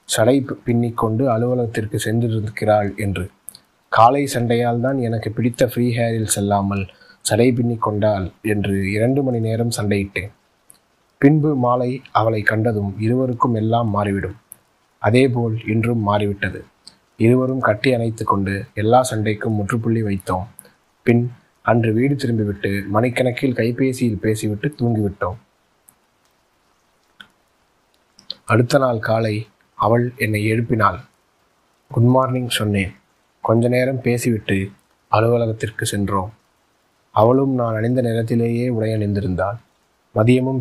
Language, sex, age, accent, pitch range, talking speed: Tamil, male, 30-49, native, 105-120 Hz, 100 wpm